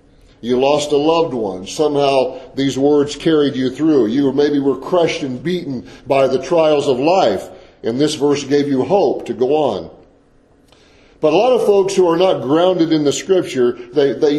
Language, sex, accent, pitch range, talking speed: English, male, American, 140-190 Hz, 190 wpm